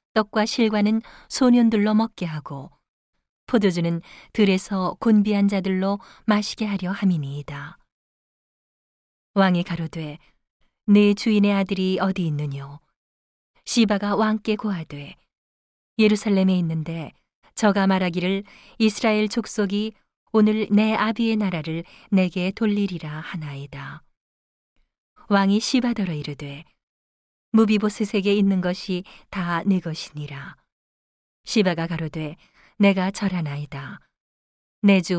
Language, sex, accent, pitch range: Korean, female, native, 160-210 Hz